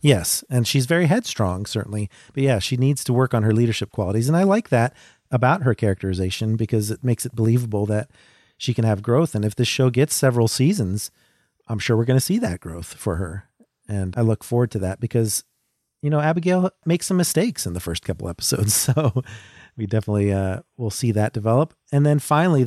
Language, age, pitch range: English, 40-59, 105-135 Hz